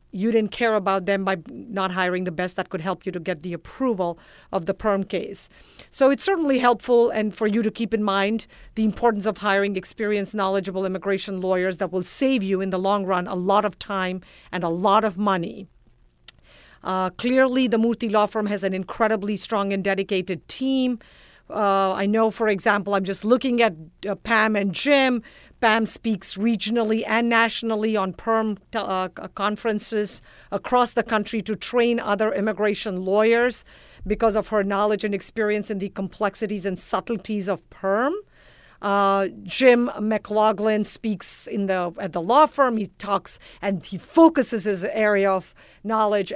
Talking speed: 170 wpm